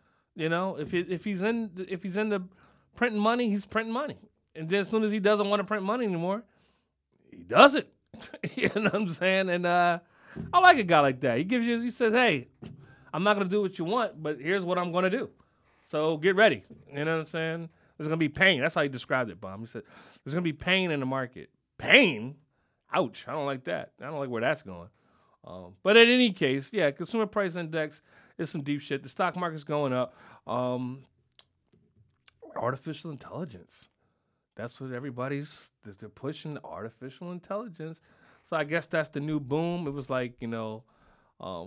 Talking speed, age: 210 wpm, 30-49